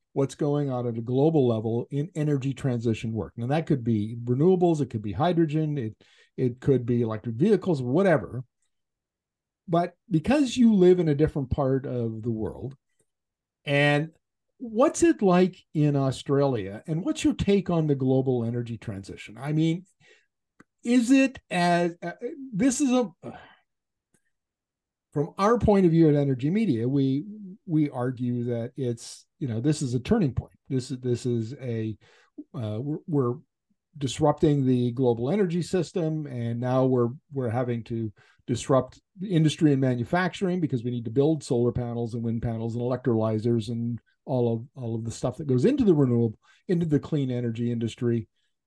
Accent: American